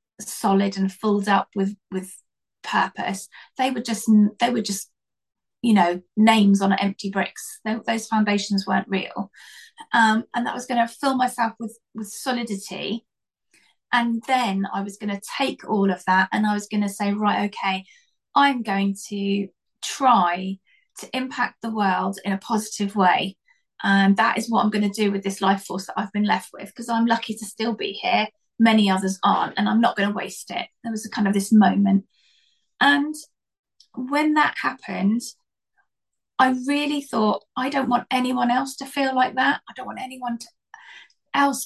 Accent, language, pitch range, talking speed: British, English, 200-255 Hz, 180 wpm